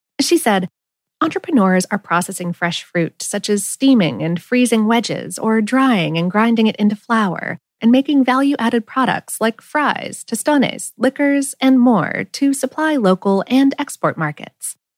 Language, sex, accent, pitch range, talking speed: English, female, American, 195-265 Hz, 145 wpm